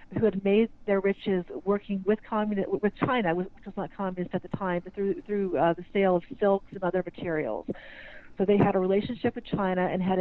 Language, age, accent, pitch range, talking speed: English, 40-59, American, 185-205 Hz, 215 wpm